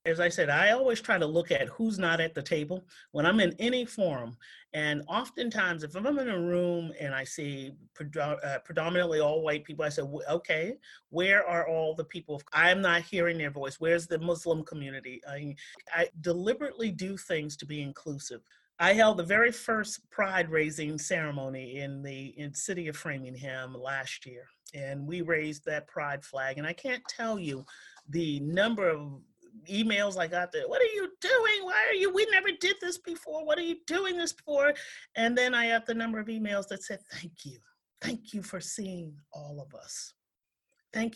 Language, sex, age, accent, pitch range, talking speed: English, male, 40-59, American, 150-225 Hz, 190 wpm